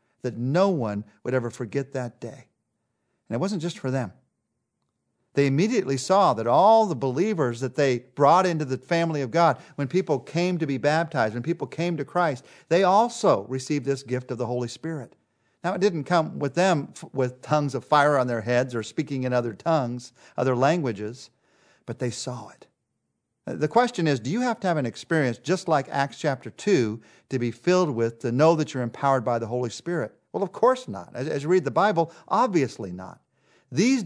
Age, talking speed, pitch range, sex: 50-69, 200 wpm, 125-170 Hz, male